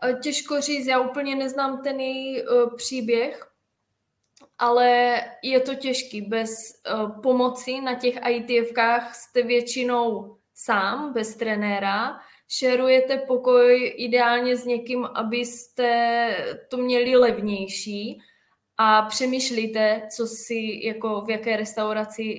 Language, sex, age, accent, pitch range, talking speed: Czech, female, 10-29, native, 215-245 Hz, 105 wpm